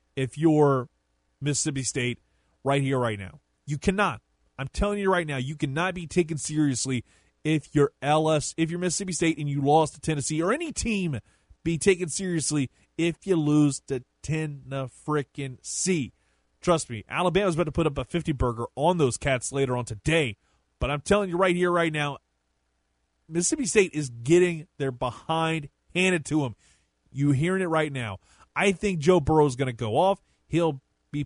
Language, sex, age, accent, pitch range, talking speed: English, male, 30-49, American, 125-175 Hz, 175 wpm